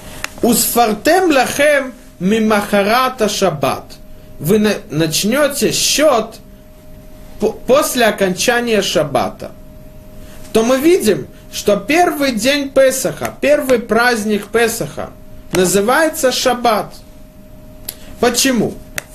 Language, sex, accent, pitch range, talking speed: Russian, male, native, 190-260 Hz, 70 wpm